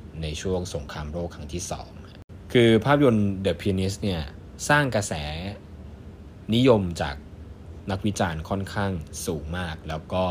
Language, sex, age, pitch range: Thai, male, 20-39, 80-100 Hz